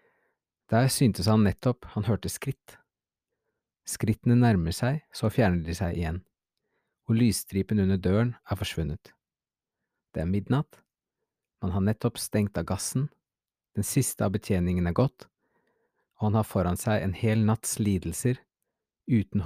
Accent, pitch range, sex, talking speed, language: Norwegian, 95-130 Hz, male, 145 wpm, English